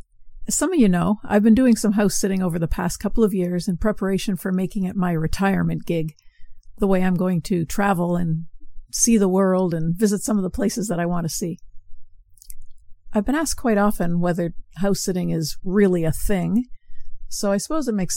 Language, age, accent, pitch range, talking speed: English, 50-69, American, 170-205 Hz, 205 wpm